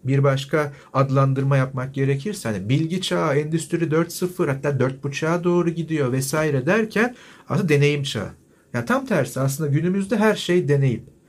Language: Turkish